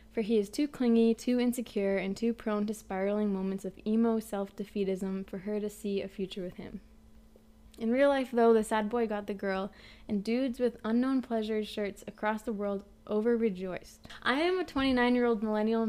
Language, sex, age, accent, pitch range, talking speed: English, female, 20-39, American, 200-225 Hz, 185 wpm